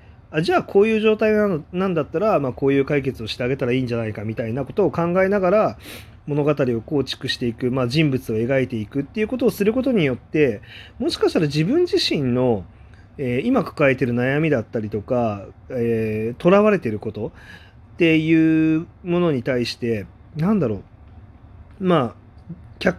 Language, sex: Japanese, male